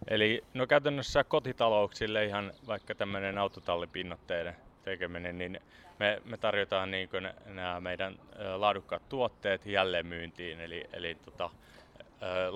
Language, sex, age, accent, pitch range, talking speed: Finnish, male, 20-39, native, 85-100 Hz, 110 wpm